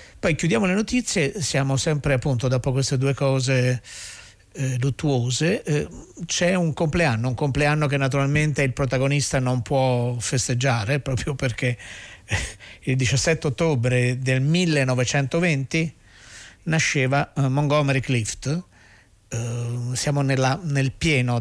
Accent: native